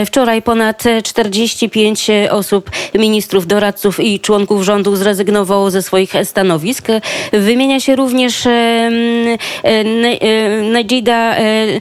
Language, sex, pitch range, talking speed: Polish, female, 210-240 Hz, 105 wpm